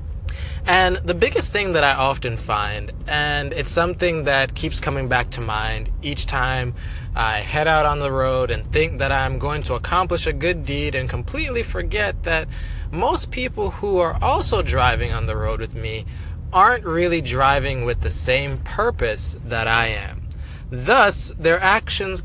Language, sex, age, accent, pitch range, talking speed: English, male, 20-39, American, 115-175 Hz, 170 wpm